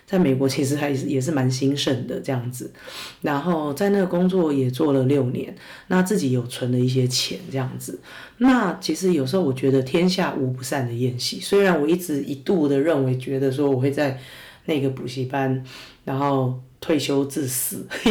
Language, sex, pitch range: Chinese, female, 130-155 Hz